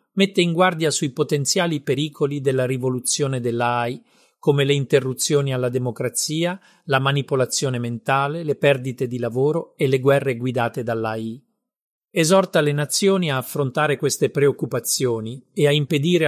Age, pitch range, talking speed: 40-59, 125-160 Hz, 135 wpm